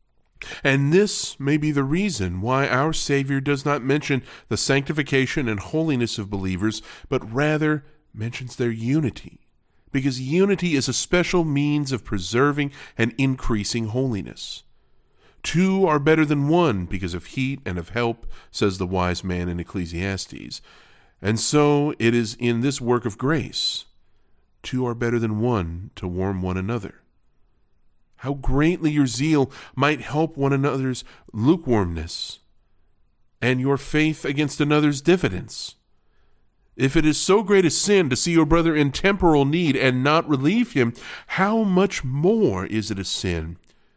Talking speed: 150 wpm